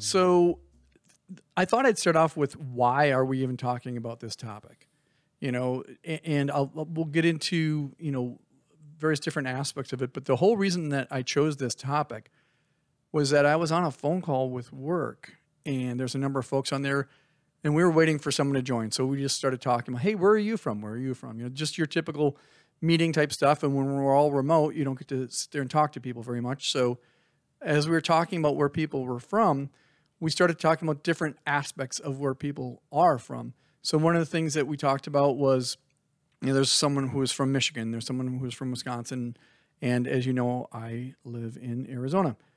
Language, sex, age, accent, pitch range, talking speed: English, male, 40-59, American, 130-160 Hz, 220 wpm